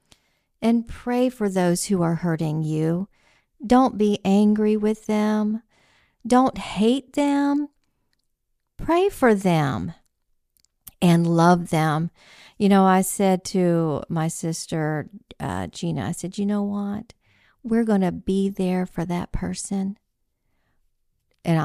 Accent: American